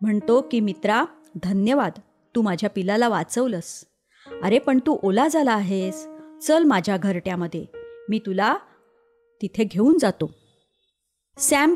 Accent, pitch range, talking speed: native, 195-270 Hz, 115 wpm